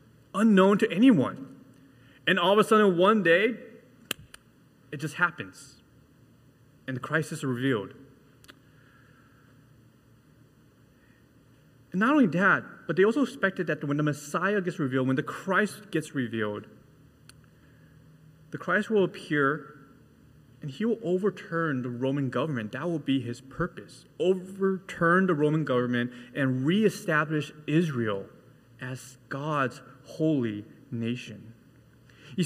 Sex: male